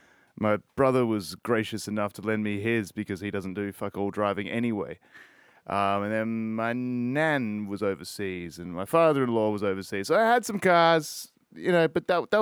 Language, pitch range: English, 110-160 Hz